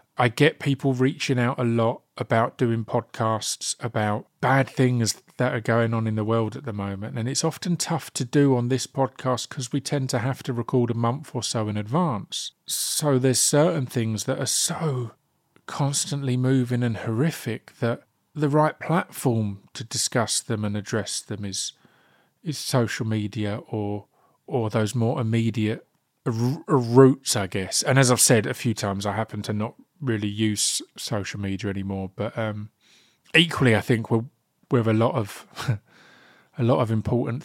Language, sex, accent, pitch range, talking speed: English, male, British, 110-130 Hz, 175 wpm